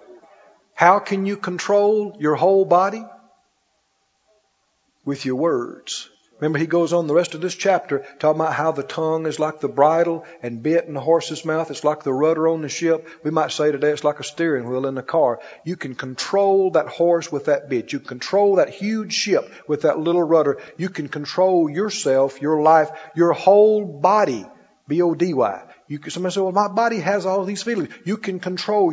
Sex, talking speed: male, 195 wpm